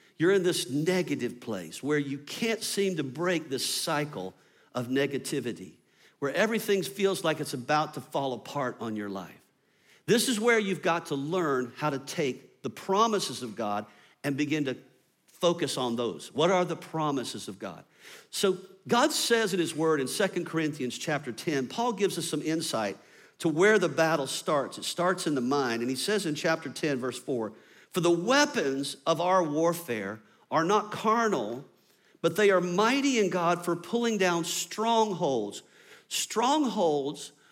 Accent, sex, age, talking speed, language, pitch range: American, male, 50-69, 170 wpm, English, 145-200 Hz